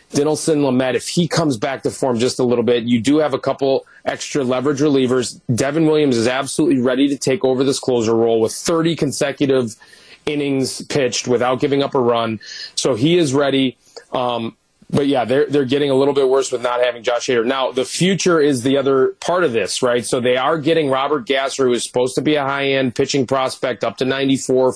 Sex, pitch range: male, 130-155 Hz